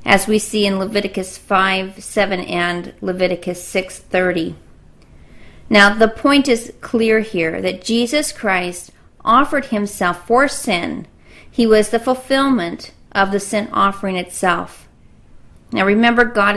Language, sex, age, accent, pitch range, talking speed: English, female, 40-59, American, 180-235 Hz, 130 wpm